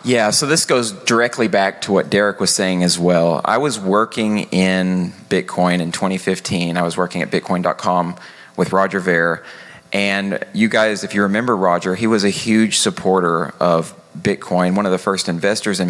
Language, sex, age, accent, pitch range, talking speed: English, male, 30-49, American, 90-105 Hz, 180 wpm